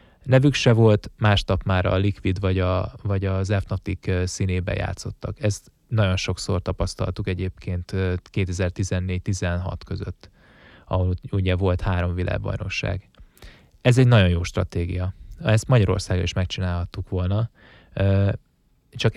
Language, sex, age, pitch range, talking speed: Hungarian, male, 20-39, 95-105 Hz, 120 wpm